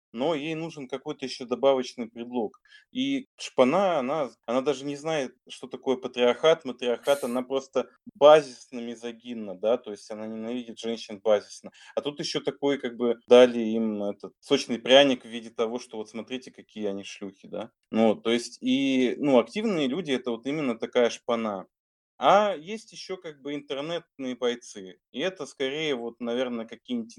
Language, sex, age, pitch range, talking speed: Russian, male, 20-39, 115-145 Hz, 165 wpm